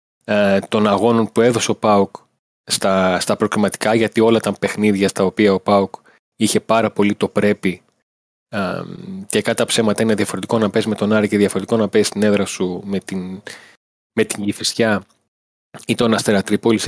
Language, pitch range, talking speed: Greek, 100-120 Hz, 170 wpm